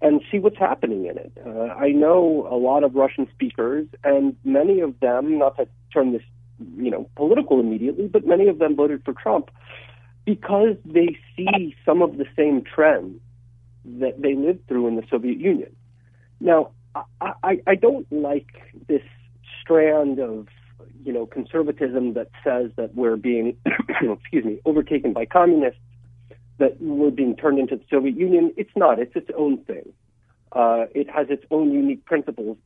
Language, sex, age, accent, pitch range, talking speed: English, male, 50-69, American, 120-170 Hz, 170 wpm